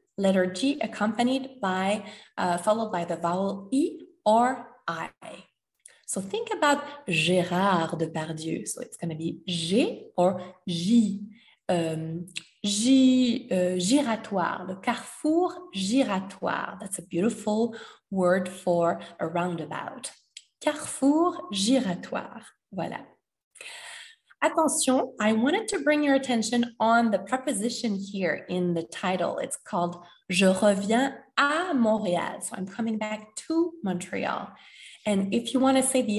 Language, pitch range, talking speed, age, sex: French, 180-255 Hz, 125 wpm, 20-39, female